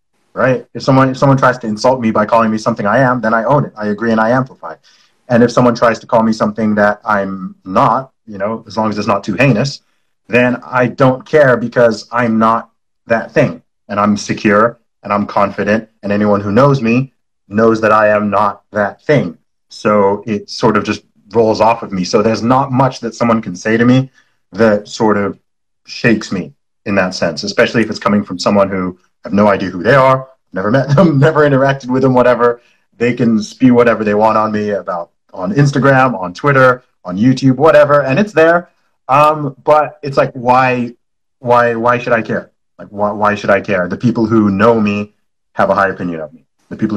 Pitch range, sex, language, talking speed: 105-130 Hz, male, English, 215 wpm